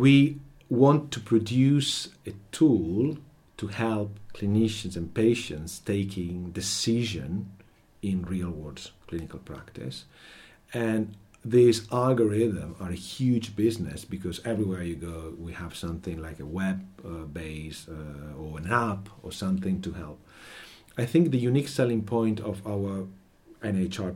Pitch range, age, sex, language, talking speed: 90-115 Hz, 50-69, male, English, 130 wpm